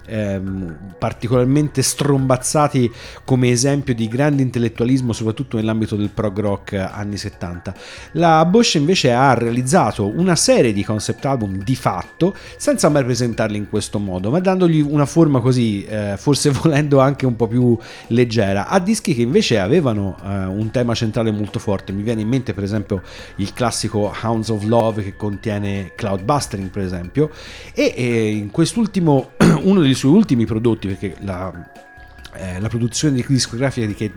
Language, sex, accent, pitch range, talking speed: Italian, male, native, 100-135 Hz, 160 wpm